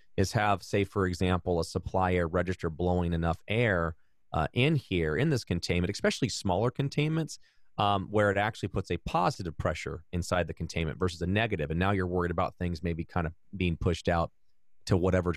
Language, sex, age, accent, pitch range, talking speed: English, male, 30-49, American, 90-110 Hz, 185 wpm